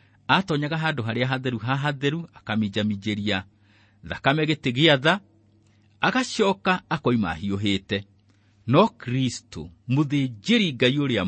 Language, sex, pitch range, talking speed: English, male, 100-145 Hz, 110 wpm